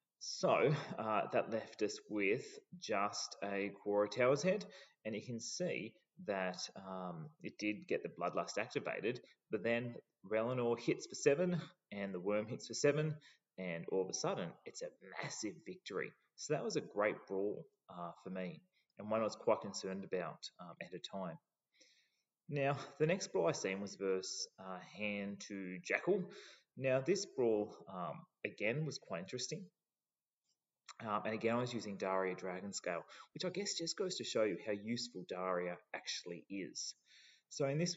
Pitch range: 95-145 Hz